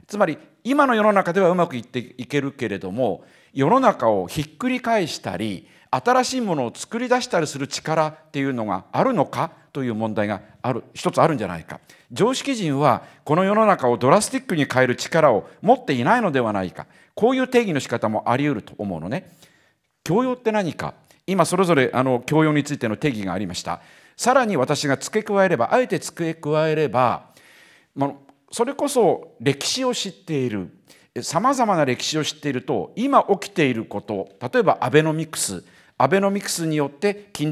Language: Japanese